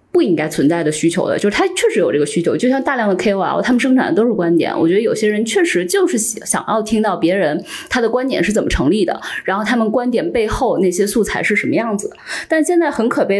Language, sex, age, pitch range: Chinese, female, 20-39, 205-320 Hz